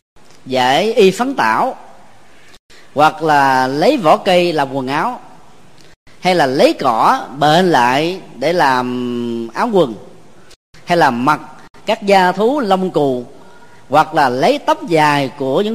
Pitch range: 135-195 Hz